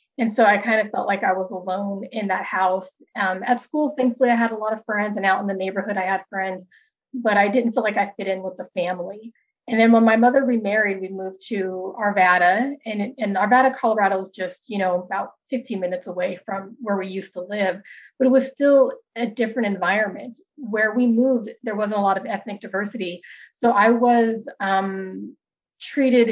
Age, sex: 30-49, female